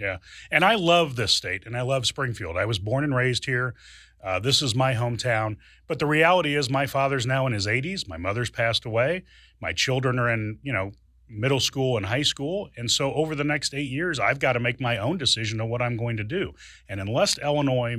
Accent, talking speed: American, 230 wpm